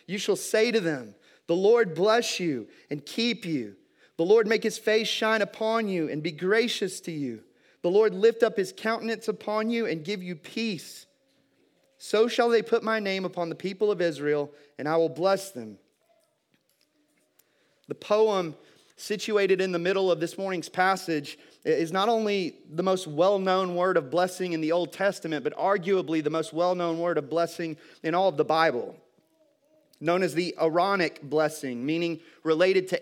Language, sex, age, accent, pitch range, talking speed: English, male, 30-49, American, 155-205 Hz, 180 wpm